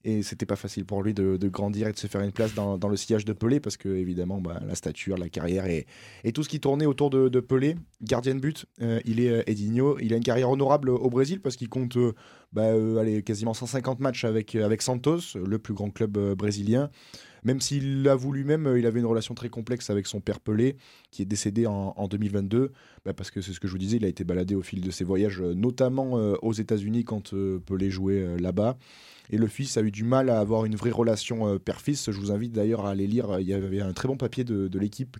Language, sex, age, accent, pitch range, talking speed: French, male, 20-39, French, 100-125 Hz, 260 wpm